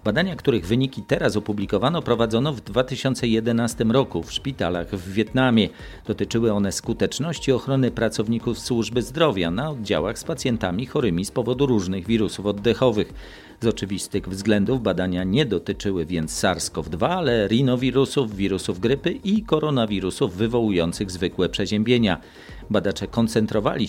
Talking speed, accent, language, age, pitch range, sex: 125 wpm, native, Polish, 40-59, 100-130 Hz, male